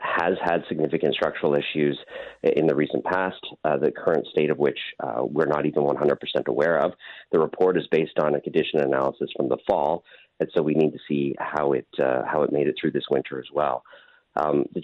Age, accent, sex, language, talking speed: 40-59, American, male, English, 220 wpm